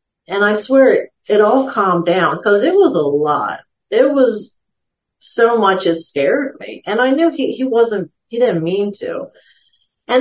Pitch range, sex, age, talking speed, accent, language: 185-250 Hz, female, 40-59, 180 wpm, American, English